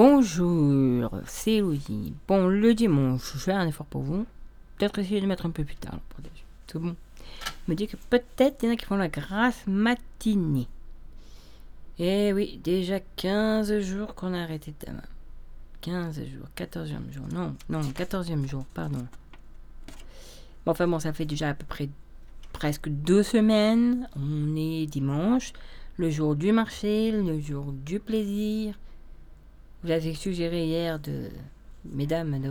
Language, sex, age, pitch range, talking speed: French, female, 40-59, 145-190 Hz, 160 wpm